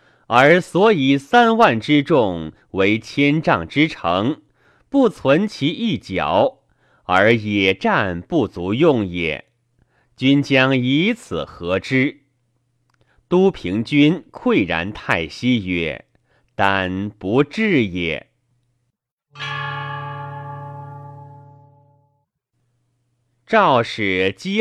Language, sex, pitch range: Chinese, male, 110-150 Hz